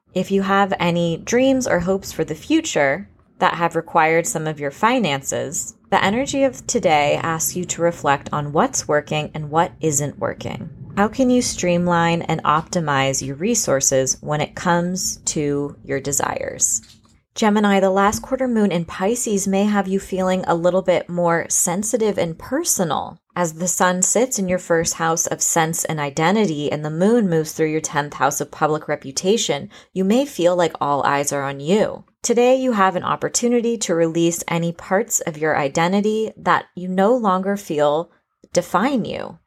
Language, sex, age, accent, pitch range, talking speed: English, female, 20-39, American, 160-200 Hz, 175 wpm